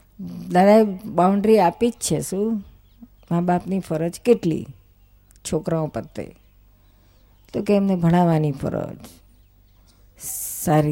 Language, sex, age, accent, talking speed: Gujarati, female, 50-69, native, 100 wpm